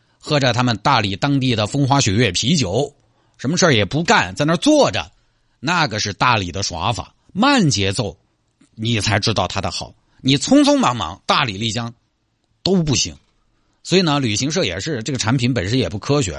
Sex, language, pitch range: male, Chinese, 105-140 Hz